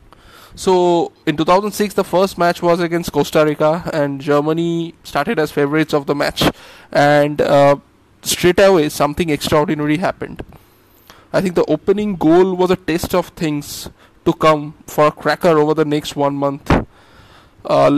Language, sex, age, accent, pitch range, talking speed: English, male, 20-39, Indian, 145-170 Hz, 155 wpm